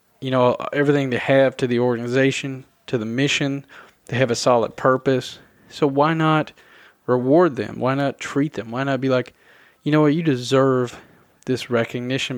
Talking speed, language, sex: 175 wpm, English, male